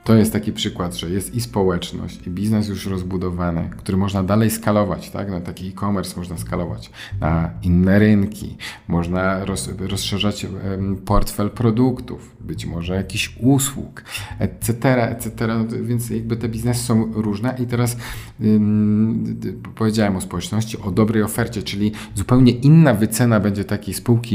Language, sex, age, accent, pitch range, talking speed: Polish, male, 40-59, native, 100-115 Hz, 145 wpm